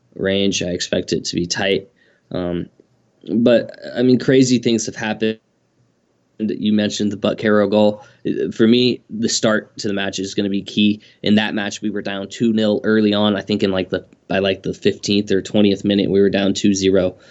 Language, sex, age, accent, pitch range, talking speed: English, male, 20-39, American, 100-110 Hz, 210 wpm